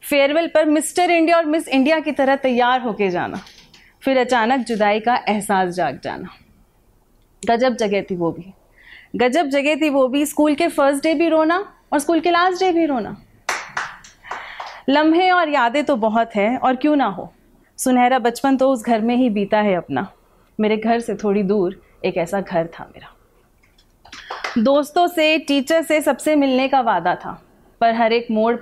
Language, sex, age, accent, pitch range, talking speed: Hindi, female, 30-49, native, 205-275 Hz, 180 wpm